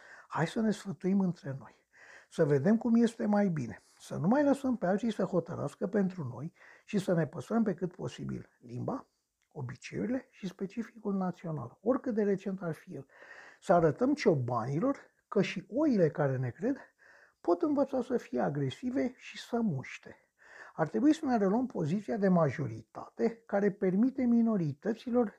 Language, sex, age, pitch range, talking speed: Romanian, male, 60-79, 155-230 Hz, 160 wpm